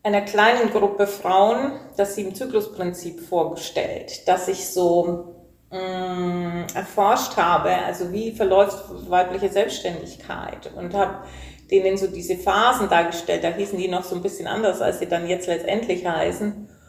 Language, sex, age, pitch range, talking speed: German, female, 30-49, 175-210 Hz, 145 wpm